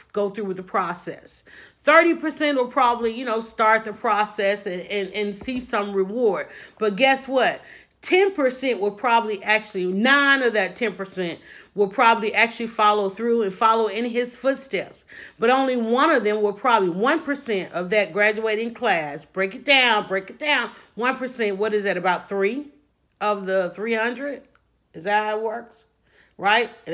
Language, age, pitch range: English, 40-59, 200-250 Hz